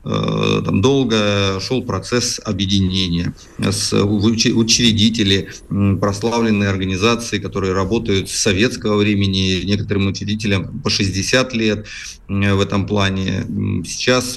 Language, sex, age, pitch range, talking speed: Russian, male, 30-49, 100-115 Hz, 95 wpm